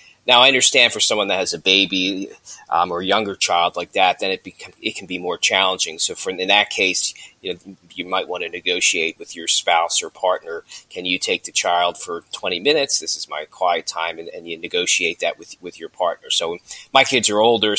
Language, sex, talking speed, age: English, male, 230 wpm, 30-49